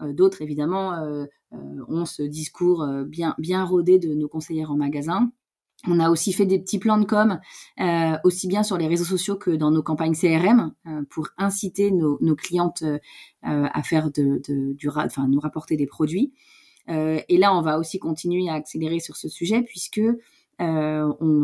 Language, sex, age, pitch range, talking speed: French, female, 20-39, 155-190 Hz, 175 wpm